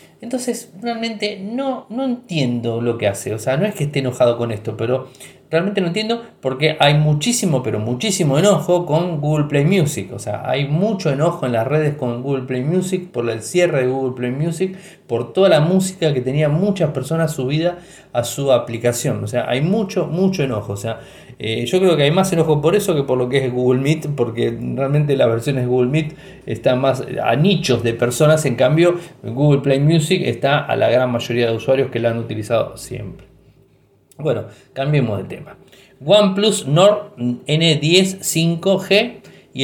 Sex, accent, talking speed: male, Argentinian, 190 wpm